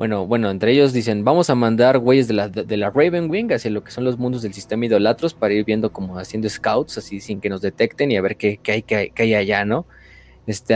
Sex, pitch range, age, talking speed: male, 105-120 Hz, 20-39, 260 wpm